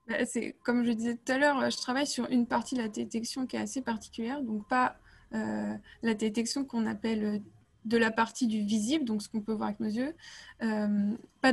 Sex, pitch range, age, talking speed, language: female, 215-255 Hz, 20-39, 215 wpm, French